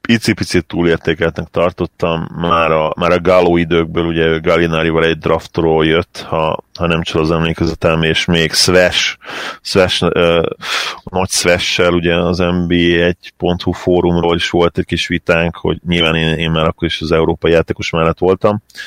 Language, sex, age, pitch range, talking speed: Hungarian, male, 30-49, 80-95 Hz, 150 wpm